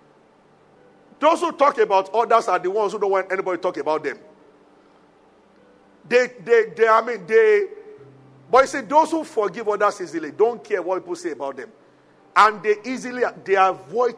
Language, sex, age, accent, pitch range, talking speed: English, male, 50-69, Nigerian, 210-315 Hz, 180 wpm